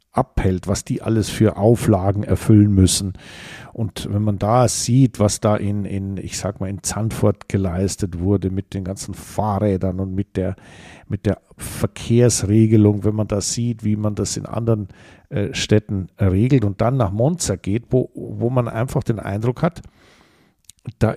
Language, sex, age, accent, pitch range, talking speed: German, male, 50-69, German, 100-140 Hz, 155 wpm